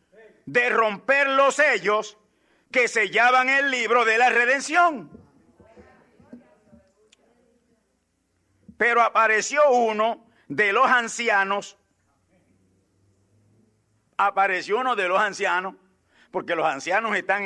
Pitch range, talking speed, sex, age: 185-245 Hz, 90 wpm, male, 50-69